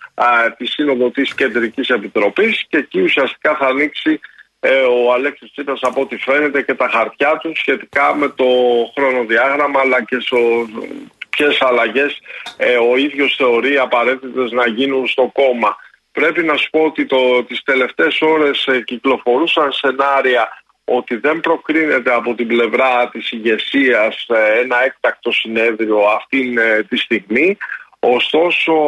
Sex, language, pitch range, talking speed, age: male, Greek, 120-150 Hz, 140 wpm, 50-69